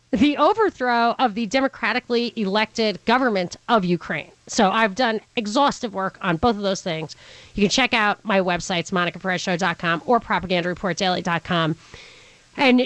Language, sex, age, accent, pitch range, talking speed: English, female, 40-59, American, 210-295 Hz, 145 wpm